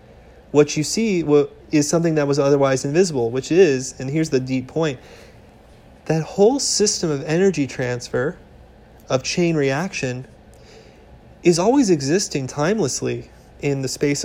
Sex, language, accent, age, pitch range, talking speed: male, English, American, 30-49, 125-160 Hz, 135 wpm